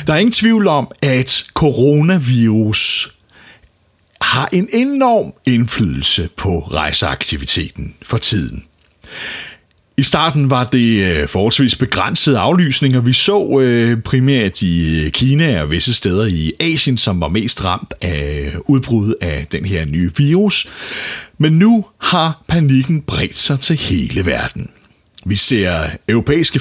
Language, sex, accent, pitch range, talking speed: Danish, male, native, 95-150 Hz, 125 wpm